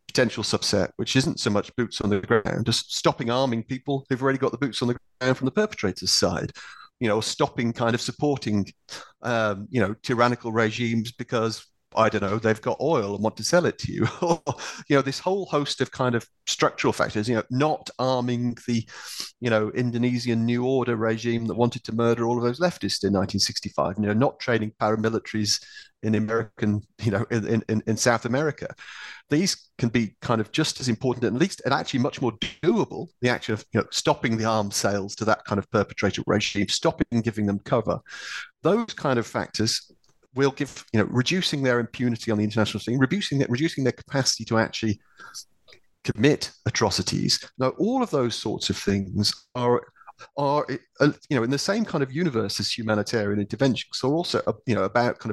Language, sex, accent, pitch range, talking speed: English, male, British, 110-130 Hz, 195 wpm